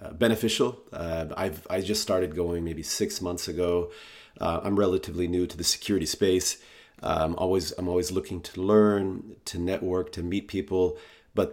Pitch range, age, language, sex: 85-100 Hz, 30-49, English, male